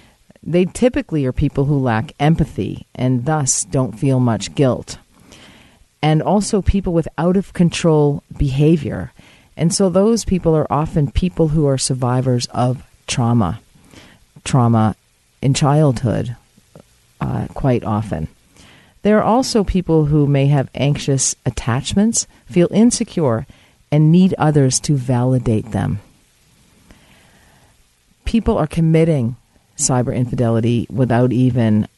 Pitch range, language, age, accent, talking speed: 120-160 Hz, English, 40-59, American, 120 wpm